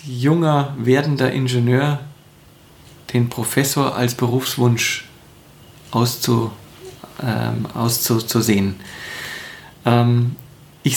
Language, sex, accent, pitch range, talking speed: German, male, German, 120-140 Hz, 60 wpm